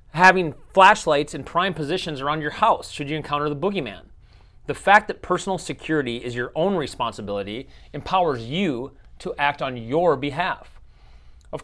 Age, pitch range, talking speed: 30-49, 125-170 Hz, 155 wpm